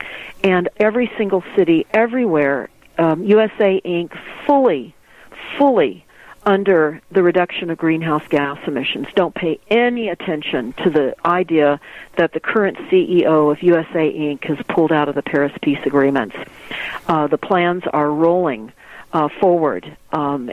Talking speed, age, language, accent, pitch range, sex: 135 wpm, 50-69, English, American, 155-190 Hz, female